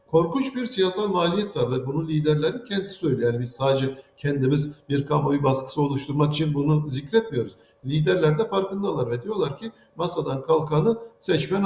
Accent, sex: native, male